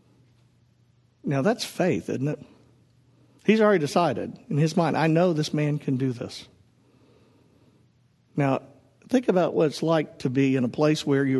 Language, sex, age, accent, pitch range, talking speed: English, male, 50-69, American, 130-170 Hz, 165 wpm